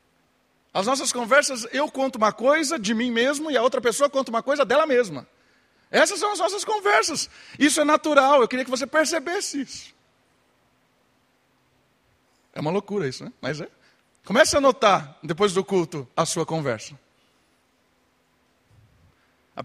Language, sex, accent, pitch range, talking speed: Portuguese, male, Brazilian, 195-280 Hz, 145 wpm